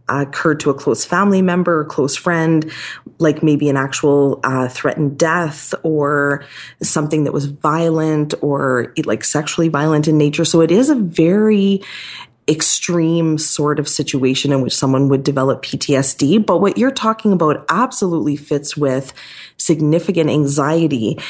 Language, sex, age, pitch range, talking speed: English, female, 30-49, 145-165 Hz, 150 wpm